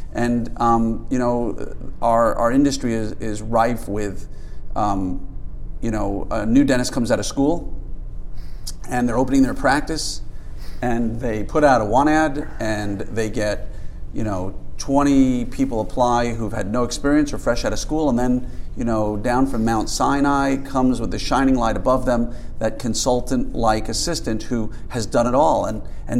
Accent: American